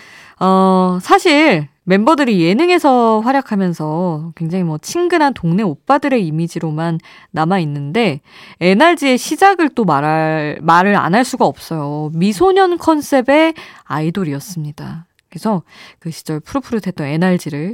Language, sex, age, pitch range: Korean, female, 20-39, 165-235 Hz